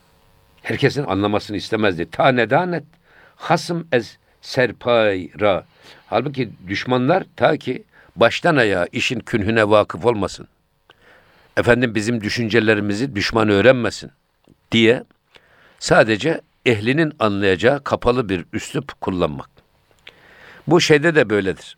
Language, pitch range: Turkish, 100-140 Hz